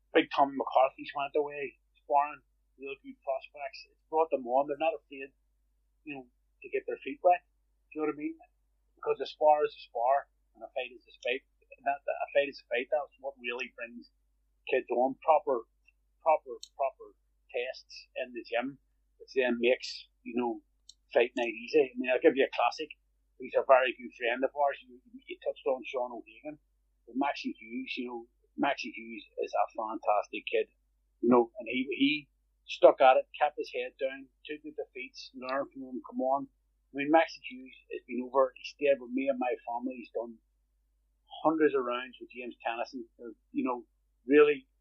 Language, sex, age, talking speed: English, male, 30-49, 195 wpm